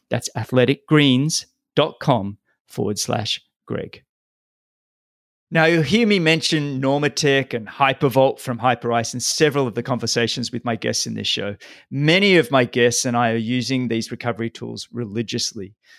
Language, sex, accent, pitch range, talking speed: English, male, Australian, 120-155 Hz, 145 wpm